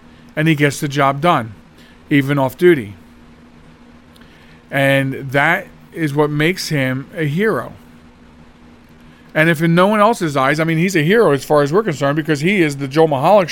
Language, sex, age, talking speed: English, male, 40-59, 180 wpm